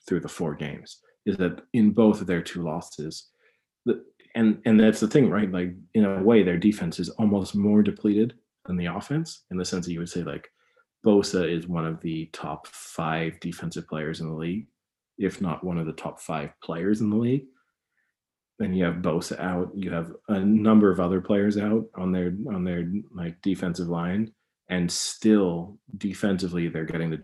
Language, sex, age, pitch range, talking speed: English, male, 30-49, 85-110 Hz, 195 wpm